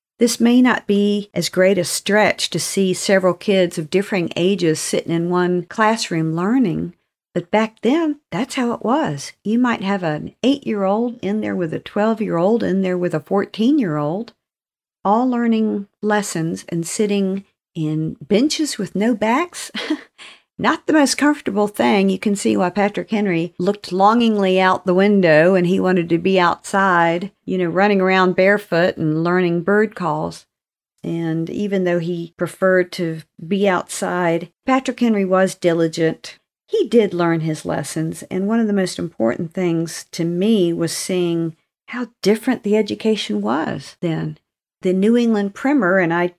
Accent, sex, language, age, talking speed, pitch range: American, female, English, 50-69, 160 wpm, 170-215 Hz